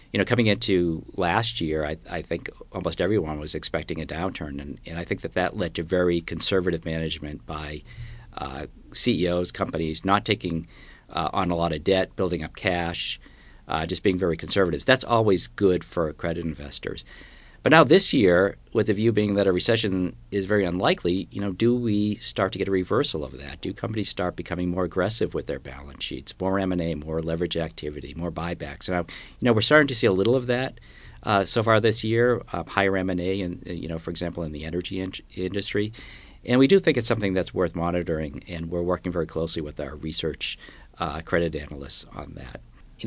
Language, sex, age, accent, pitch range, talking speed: English, male, 50-69, American, 75-95 Hz, 205 wpm